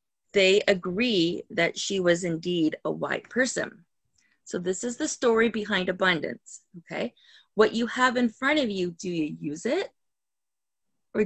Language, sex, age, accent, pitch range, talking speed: English, female, 30-49, American, 180-245 Hz, 155 wpm